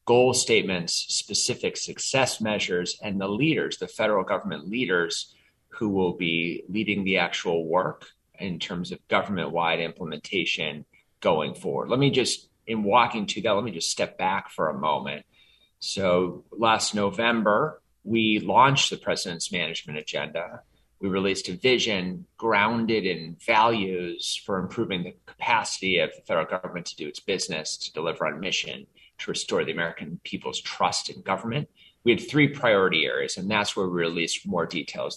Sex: male